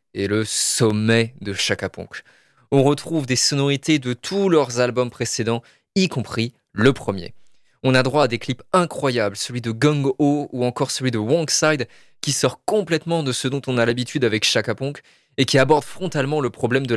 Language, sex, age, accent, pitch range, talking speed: French, male, 20-39, French, 110-140 Hz, 185 wpm